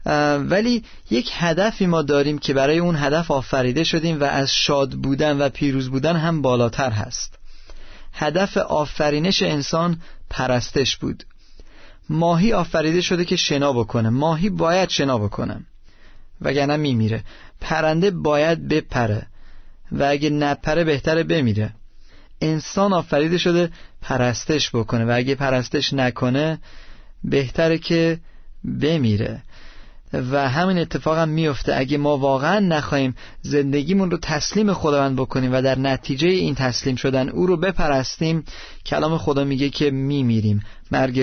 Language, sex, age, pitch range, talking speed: Persian, male, 30-49, 125-165 Hz, 130 wpm